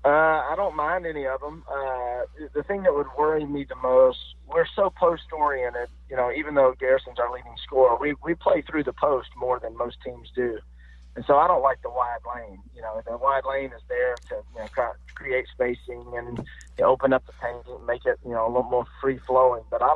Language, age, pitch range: English, 30-49, 115-135 Hz